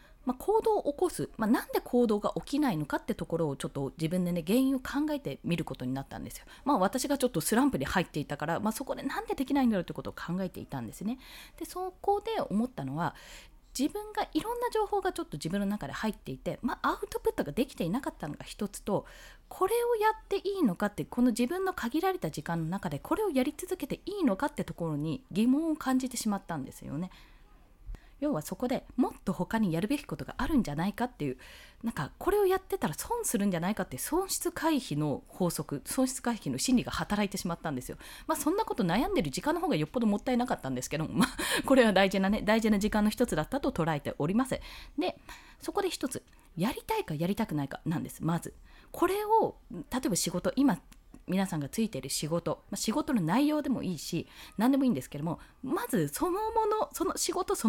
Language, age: Japanese, 20-39